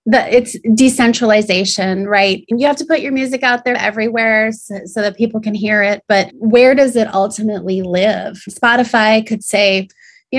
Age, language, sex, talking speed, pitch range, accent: 20-39, English, female, 170 wpm, 200-235 Hz, American